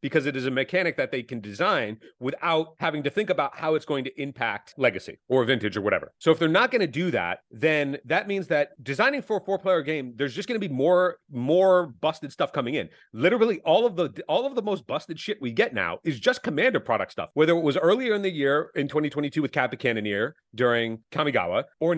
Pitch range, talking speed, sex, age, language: 135-175 Hz, 230 wpm, male, 30-49, English